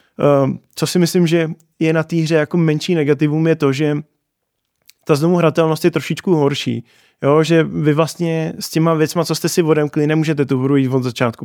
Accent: native